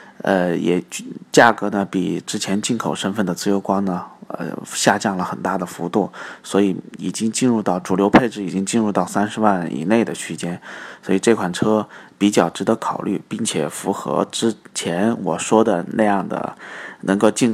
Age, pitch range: 20-39, 95-115 Hz